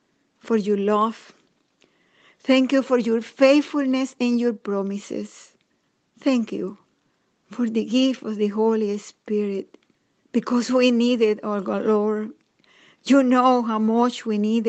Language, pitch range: English, 215-270 Hz